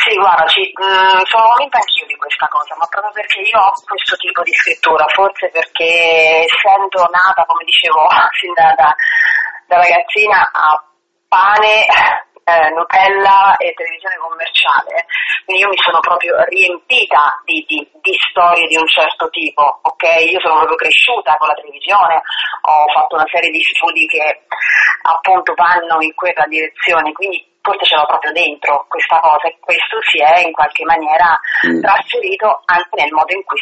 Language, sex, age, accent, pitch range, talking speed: Italian, female, 30-49, native, 165-235 Hz, 165 wpm